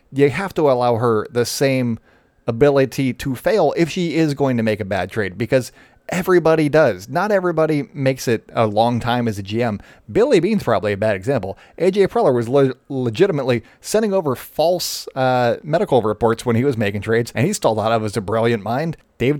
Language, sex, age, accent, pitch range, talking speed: English, male, 30-49, American, 115-145 Hz, 200 wpm